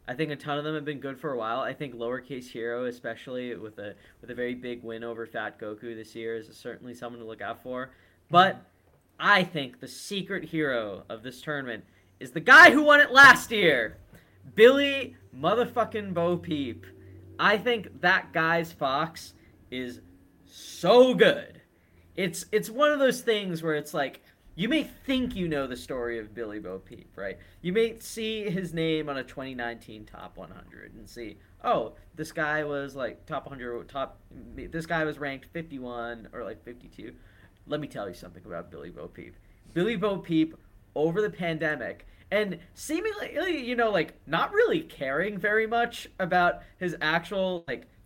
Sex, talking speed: male, 180 wpm